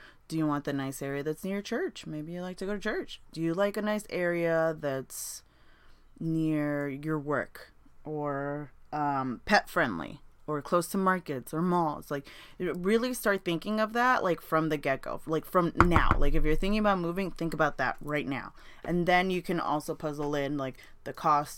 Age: 20-39